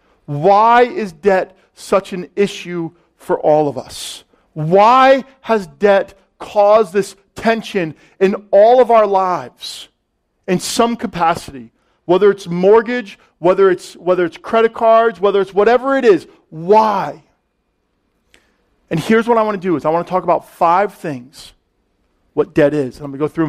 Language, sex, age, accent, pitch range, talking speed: English, male, 40-59, American, 160-215 Hz, 160 wpm